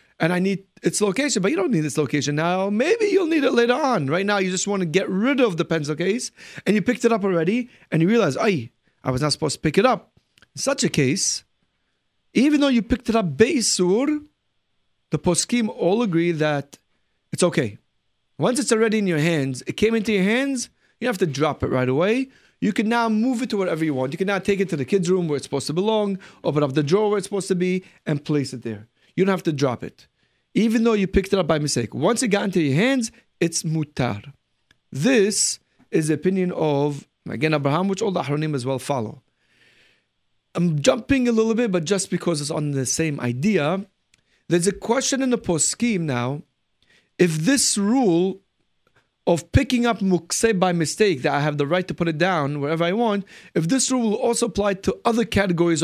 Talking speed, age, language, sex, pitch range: 220 wpm, 30-49, English, male, 155-220 Hz